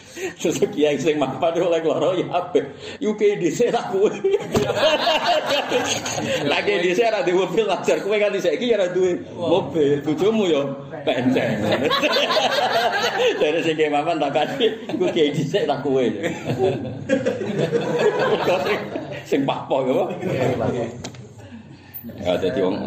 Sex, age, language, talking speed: male, 40-59, Indonesian, 40 wpm